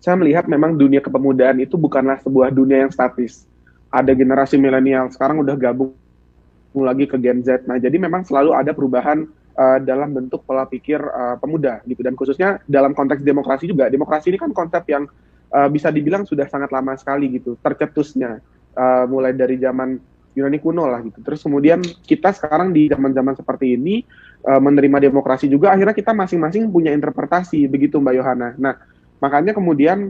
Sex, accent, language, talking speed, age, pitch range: male, native, Indonesian, 170 wpm, 20-39, 130-150 Hz